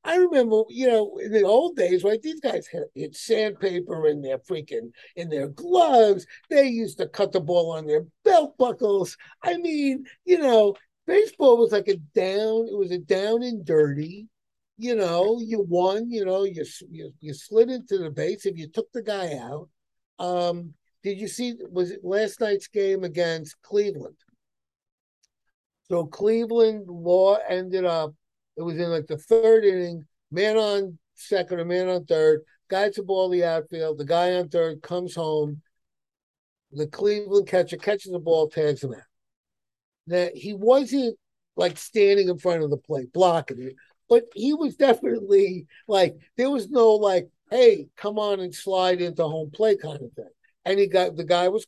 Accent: American